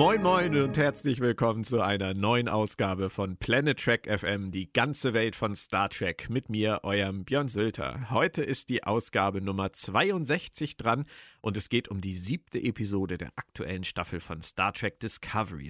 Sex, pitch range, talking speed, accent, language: male, 110-140 Hz, 170 wpm, German, German